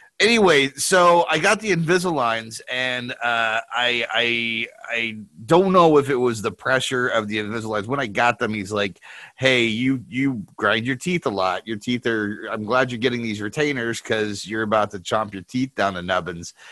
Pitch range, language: 105-135 Hz, English